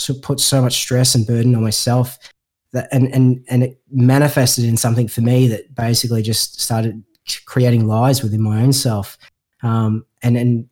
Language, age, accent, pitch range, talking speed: English, 20-39, Australian, 115-130 Hz, 175 wpm